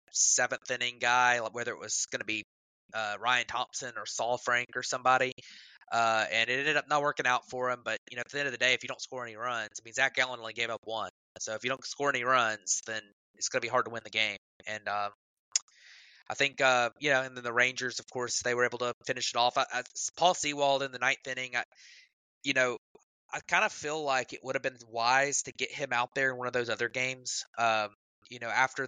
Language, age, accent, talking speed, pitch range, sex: English, 20-39, American, 255 wpm, 110-130 Hz, male